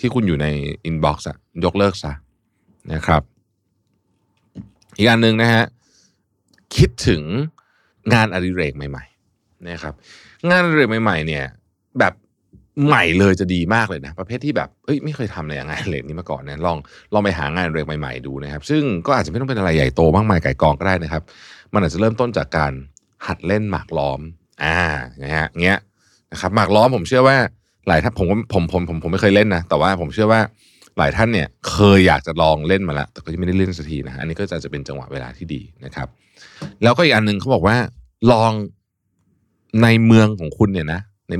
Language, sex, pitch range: Thai, male, 80-115 Hz